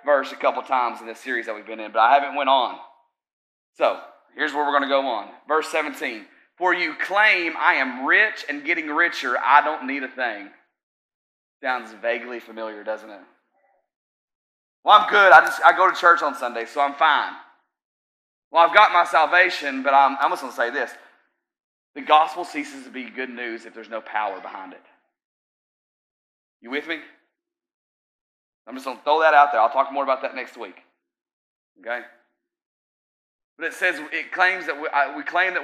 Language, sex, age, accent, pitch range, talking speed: English, male, 30-49, American, 120-155 Hz, 190 wpm